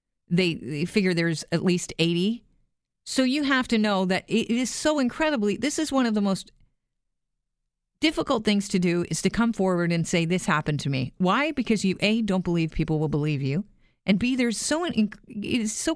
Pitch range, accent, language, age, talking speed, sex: 170-230 Hz, American, English, 40-59, 195 wpm, female